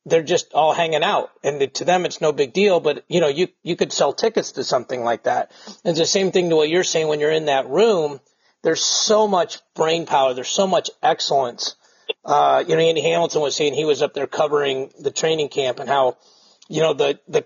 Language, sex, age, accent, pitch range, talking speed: English, male, 40-59, American, 150-220 Hz, 235 wpm